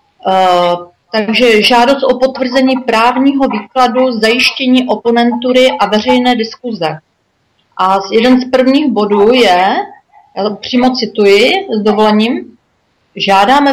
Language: Slovak